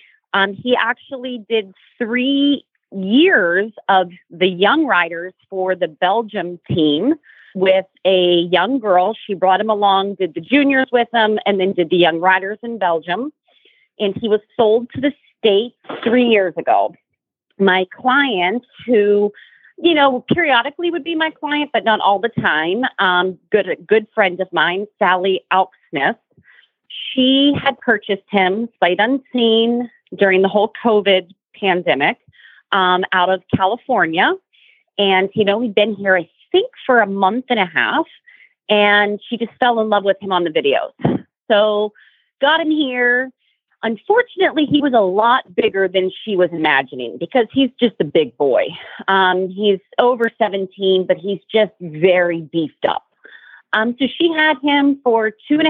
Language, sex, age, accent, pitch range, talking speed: English, female, 40-59, American, 190-255 Hz, 160 wpm